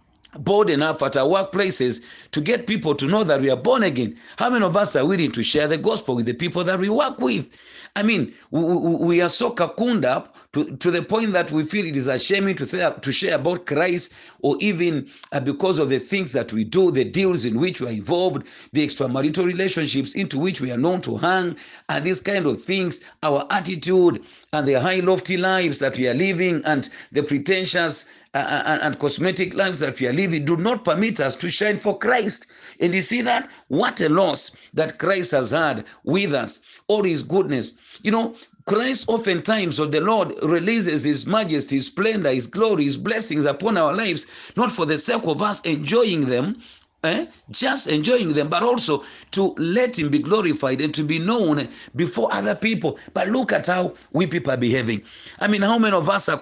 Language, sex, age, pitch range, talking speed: English, male, 50-69, 145-200 Hz, 200 wpm